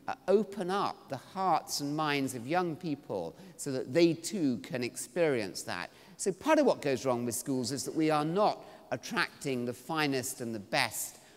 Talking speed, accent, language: 185 wpm, British, English